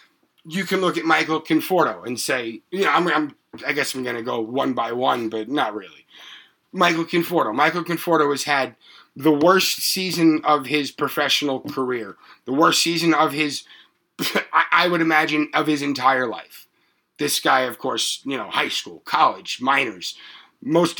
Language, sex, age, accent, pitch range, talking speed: English, male, 30-49, American, 135-170 Hz, 175 wpm